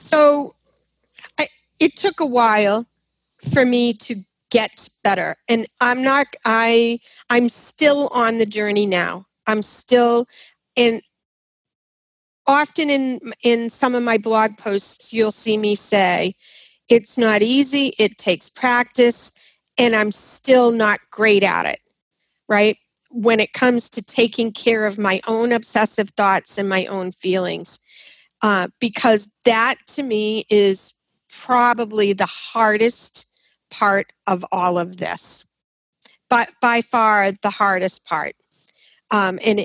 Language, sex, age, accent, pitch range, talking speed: English, female, 40-59, American, 210-255 Hz, 130 wpm